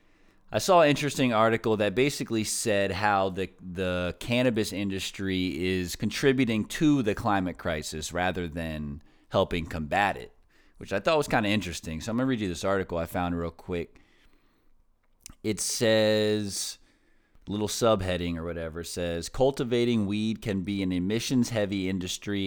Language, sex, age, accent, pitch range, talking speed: English, male, 30-49, American, 90-115 Hz, 155 wpm